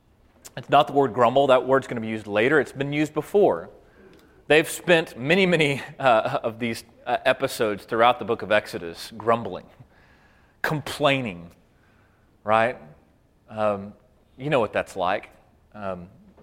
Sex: male